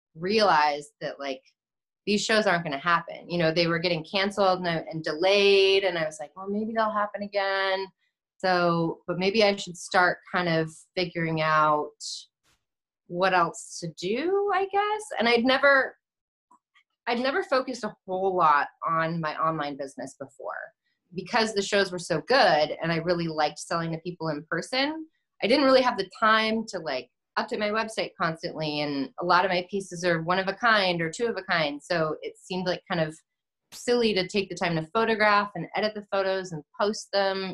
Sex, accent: female, American